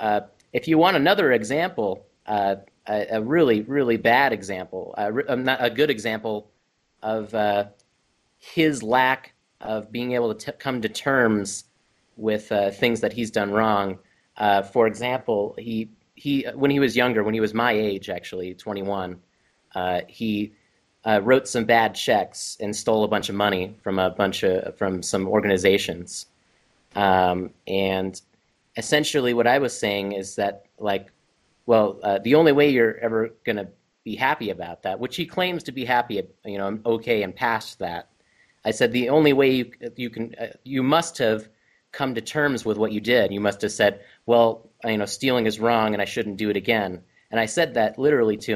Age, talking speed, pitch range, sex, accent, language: 30-49, 190 wpm, 100-125 Hz, male, American, English